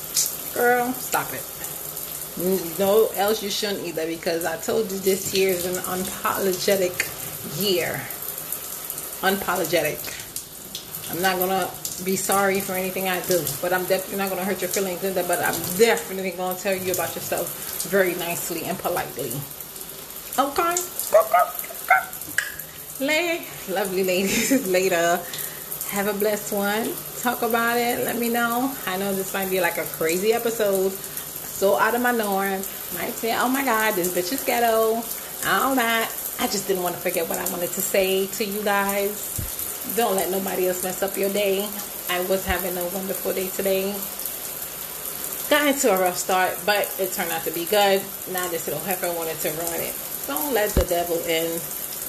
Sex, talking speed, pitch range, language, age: female, 165 wpm, 180-210 Hz, English, 30-49